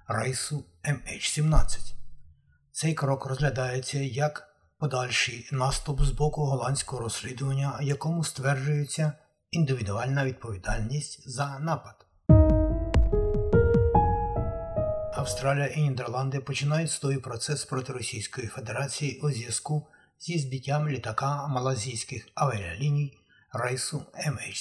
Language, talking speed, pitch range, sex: Ukrainian, 90 wpm, 125-150 Hz, male